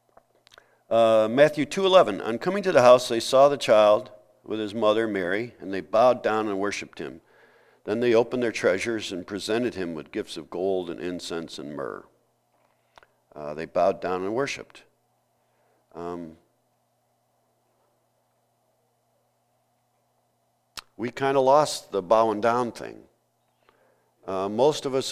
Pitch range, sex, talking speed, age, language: 110-145 Hz, male, 135 wpm, 50-69, English